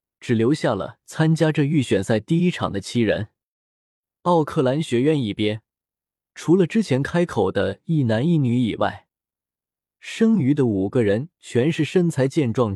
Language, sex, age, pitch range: Chinese, male, 20-39, 110-165 Hz